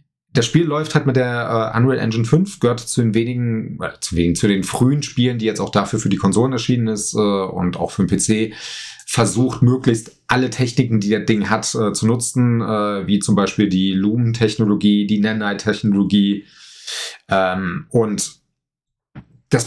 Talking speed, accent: 180 wpm, German